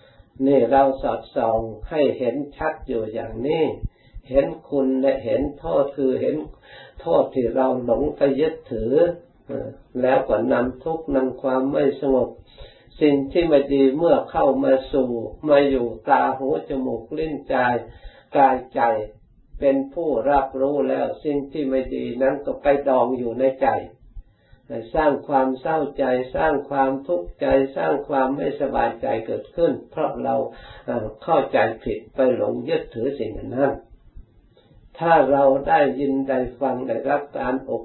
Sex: male